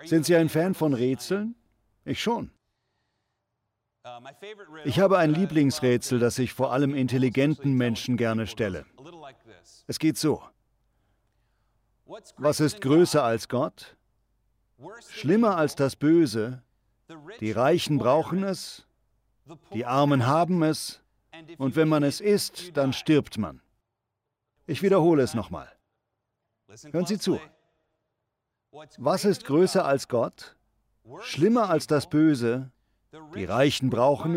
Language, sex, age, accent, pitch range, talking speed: German, male, 50-69, German, 120-165 Hz, 115 wpm